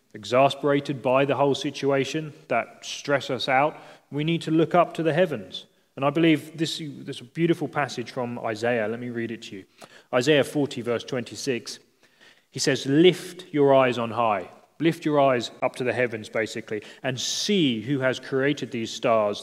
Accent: British